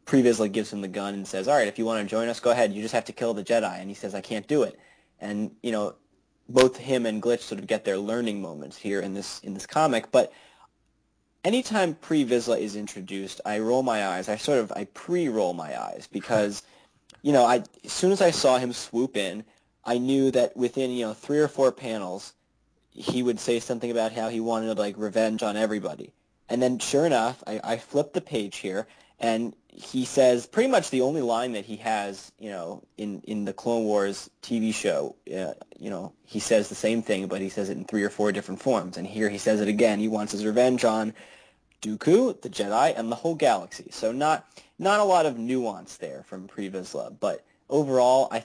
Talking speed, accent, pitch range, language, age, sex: 225 wpm, American, 105-125 Hz, English, 20-39, male